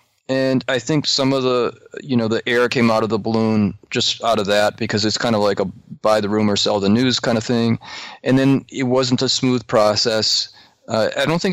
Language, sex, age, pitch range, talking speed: English, male, 30-49, 105-125 Hz, 235 wpm